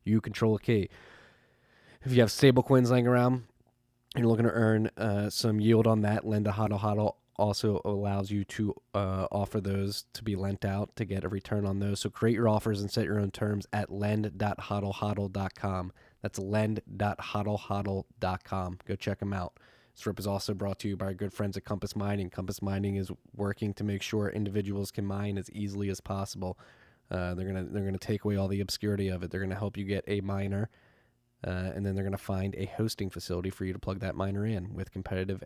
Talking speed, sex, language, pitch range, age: 205 wpm, male, English, 95-105 Hz, 20-39